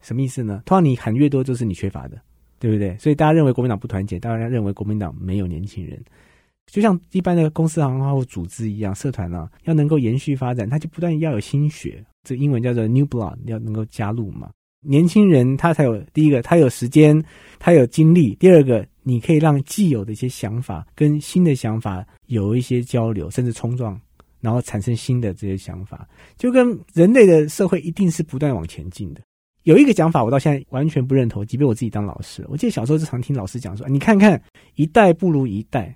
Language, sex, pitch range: Chinese, male, 110-155 Hz